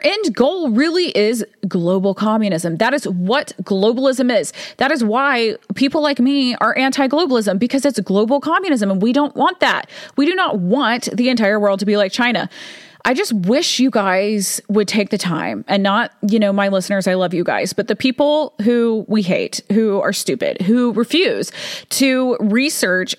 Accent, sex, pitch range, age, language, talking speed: American, female, 205-260 Hz, 30-49, English, 190 wpm